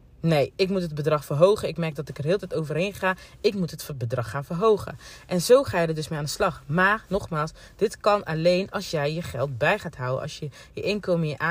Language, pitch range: Dutch, 145-185 Hz